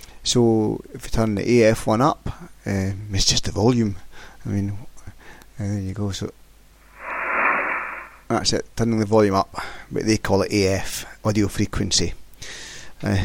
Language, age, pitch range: English, 30-49, 95-110 Hz